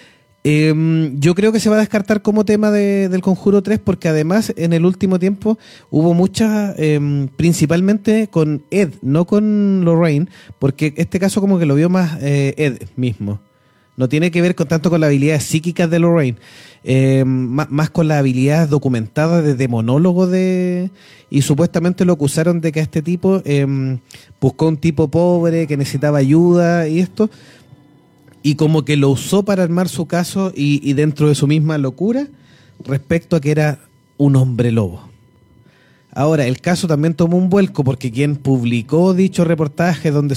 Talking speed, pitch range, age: 170 wpm, 140-175 Hz, 30-49